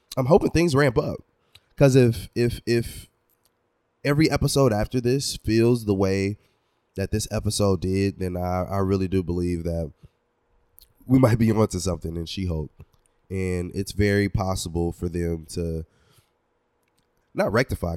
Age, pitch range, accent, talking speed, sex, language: 20-39, 90-115 Hz, American, 145 wpm, male, English